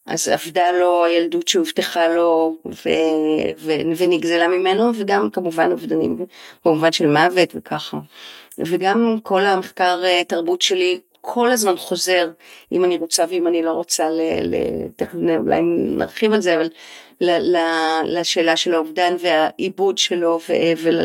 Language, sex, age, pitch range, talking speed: Hebrew, female, 40-59, 170-220 Hz, 125 wpm